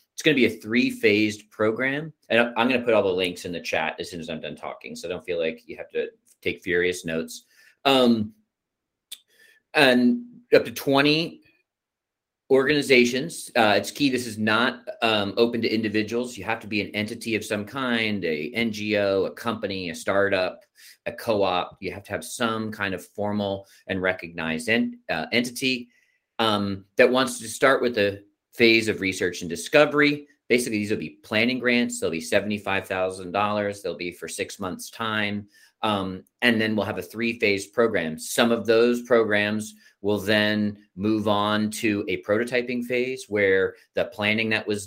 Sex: male